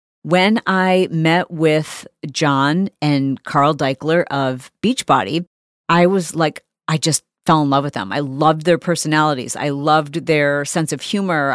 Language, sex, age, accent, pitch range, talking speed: English, female, 40-59, American, 150-195 Hz, 155 wpm